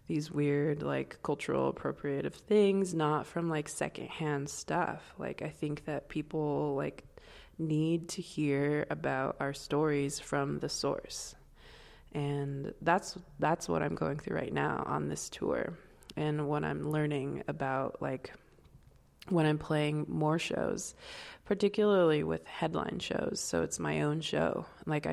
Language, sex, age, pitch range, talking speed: English, female, 20-39, 145-175 Hz, 140 wpm